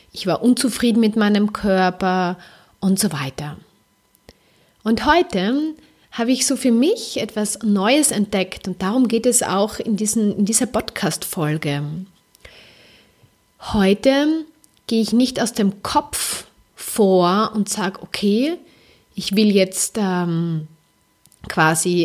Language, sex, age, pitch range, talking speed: German, female, 30-49, 190-245 Hz, 120 wpm